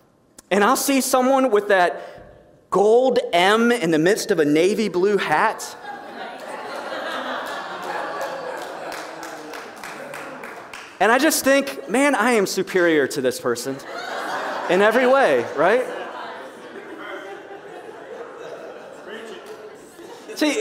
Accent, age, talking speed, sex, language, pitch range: American, 30-49, 95 wpm, male, English, 220-290 Hz